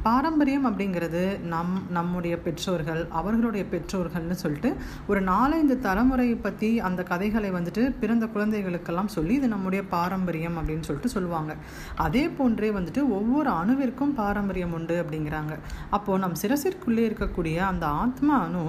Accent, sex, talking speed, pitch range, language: native, female, 120 wpm, 175-240 Hz, Tamil